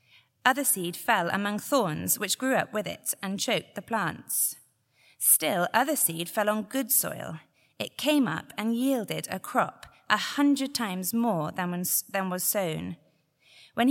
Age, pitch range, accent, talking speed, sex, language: 30-49, 195-255 Hz, British, 155 wpm, female, English